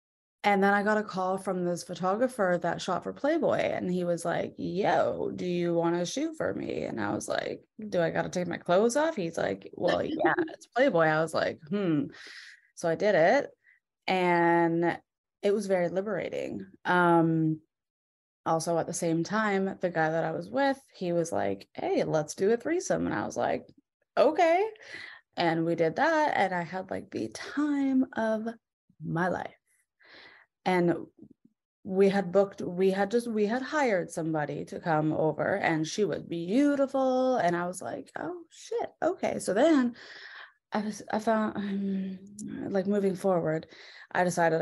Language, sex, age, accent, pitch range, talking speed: English, female, 20-39, American, 170-220 Hz, 175 wpm